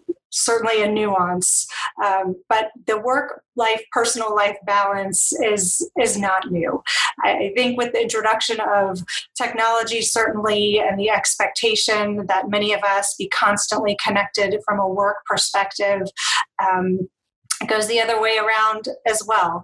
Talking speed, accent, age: 140 wpm, American, 30-49